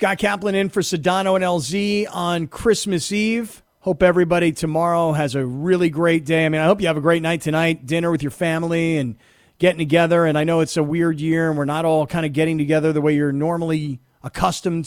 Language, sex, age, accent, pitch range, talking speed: English, male, 40-59, American, 150-180 Hz, 220 wpm